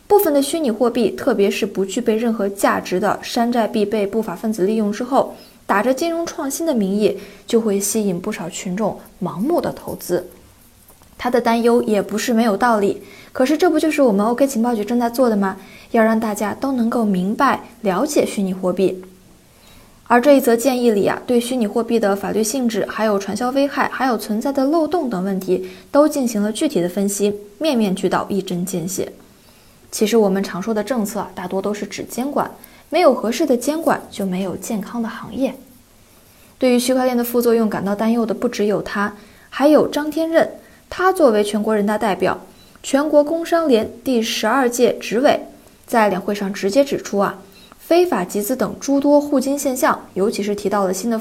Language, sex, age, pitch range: Chinese, female, 20-39, 205-270 Hz